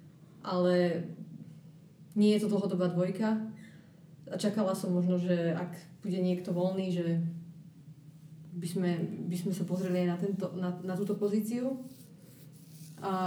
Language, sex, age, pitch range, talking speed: Slovak, female, 20-39, 180-205 Hz, 125 wpm